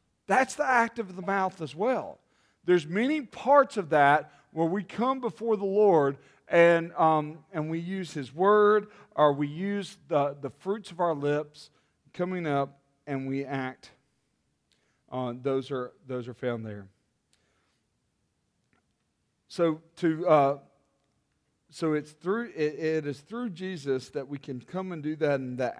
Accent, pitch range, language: American, 125-165 Hz, English